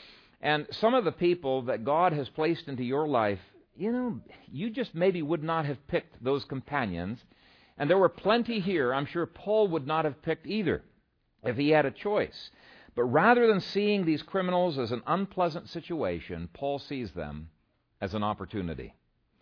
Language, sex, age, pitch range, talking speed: English, male, 50-69, 100-160 Hz, 175 wpm